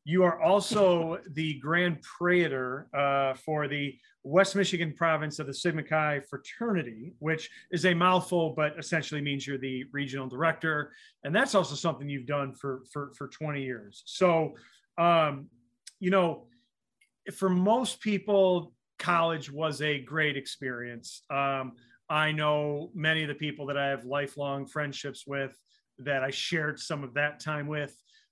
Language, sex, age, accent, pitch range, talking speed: English, male, 30-49, American, 140-175 Hz, 155 wpm